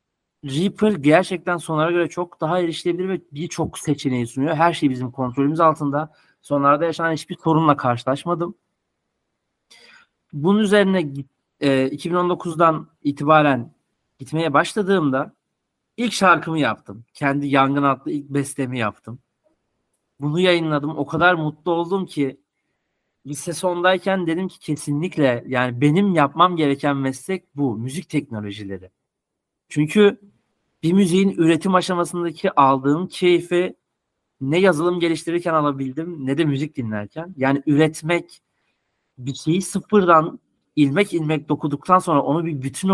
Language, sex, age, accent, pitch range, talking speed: Turkish, male, 40-59, native, 140-180 Hz, 115 wpm